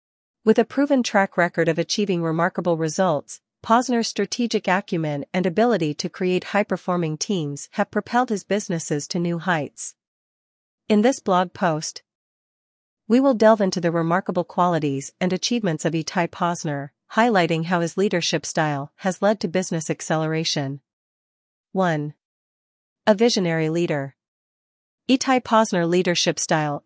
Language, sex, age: English, female, 40-59